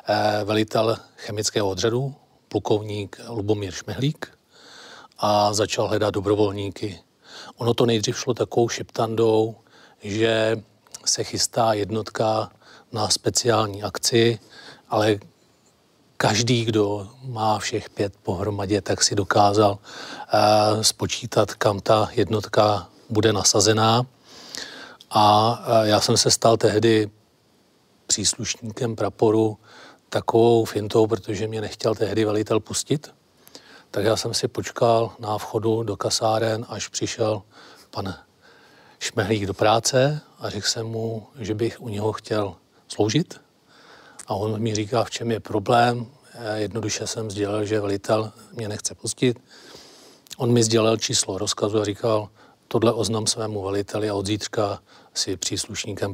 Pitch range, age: 105-115 Hz, 40-59